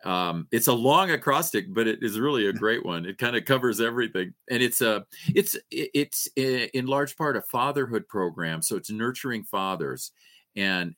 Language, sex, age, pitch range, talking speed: English, male, 40-59, 85-115 Hz, 180 wpm